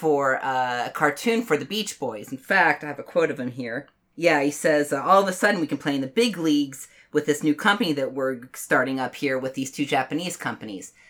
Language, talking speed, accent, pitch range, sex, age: English, 250 wpm, American, 145-215 Hz, female, 30-49